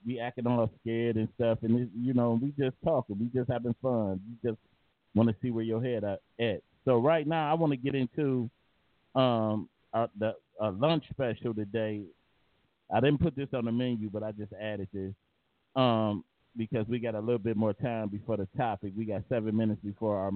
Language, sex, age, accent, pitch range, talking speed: English, male, 30-49, American, 110-135 Hz, 200 wpm